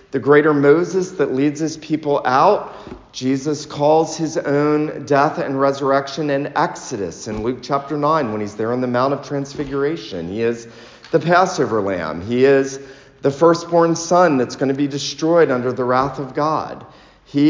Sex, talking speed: male, 170 wpm